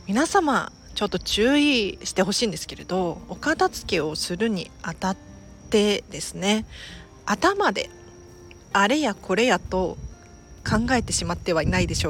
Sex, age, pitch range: female, 40-59, 170-270 Hz